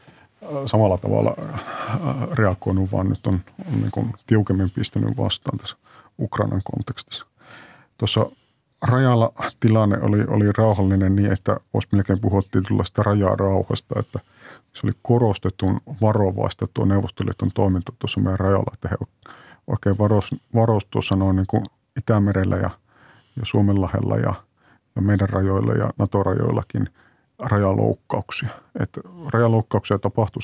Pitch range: 95-115 Hz